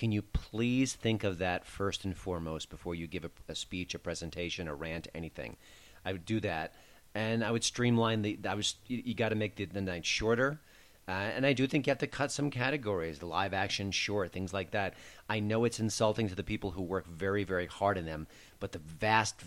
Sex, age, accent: male, 40-59, American